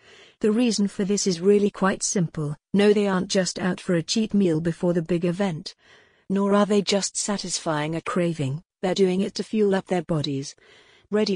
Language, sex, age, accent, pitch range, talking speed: English, female, 50-69, British, 170-205 Hz, 195 wpm